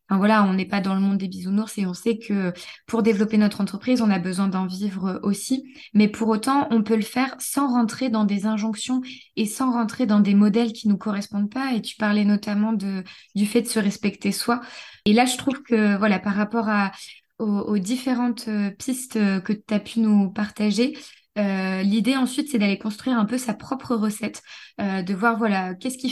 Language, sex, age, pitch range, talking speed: French, female, 20-39, 205-240 Hz, 215 wpm